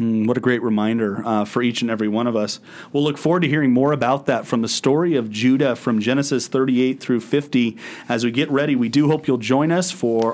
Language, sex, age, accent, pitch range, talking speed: English, male, 40-59, American, 125-150 Hz, 240 wpm